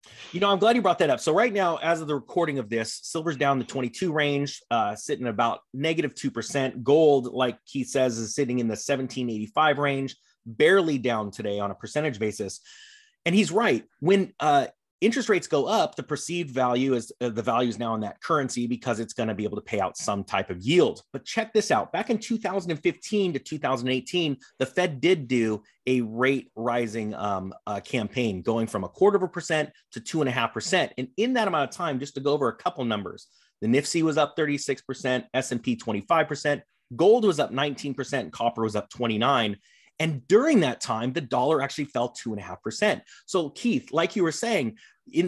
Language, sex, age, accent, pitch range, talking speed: English, male, 30-49, American, 120-160 Hz, 210 wpm